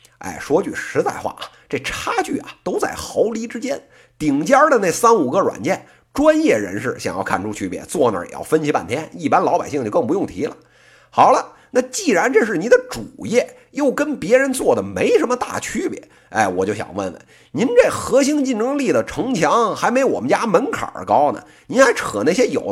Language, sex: Chinese, male